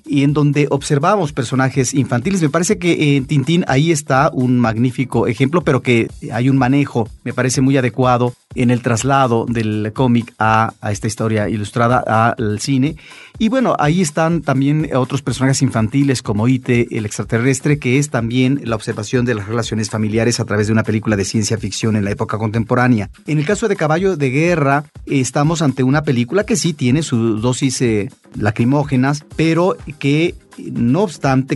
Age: 40-59